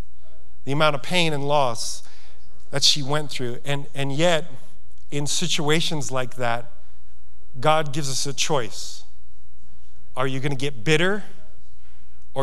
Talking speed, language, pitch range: 140 wpm, English, 125-190 Hz